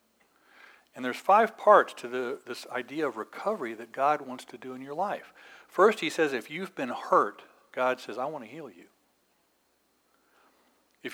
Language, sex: English, male